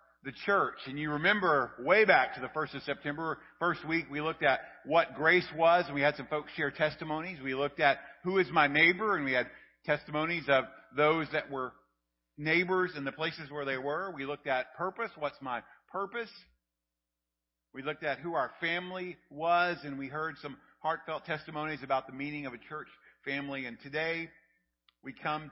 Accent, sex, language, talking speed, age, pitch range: American, male, English, 190 wpm, 50-69, 130-160 Hz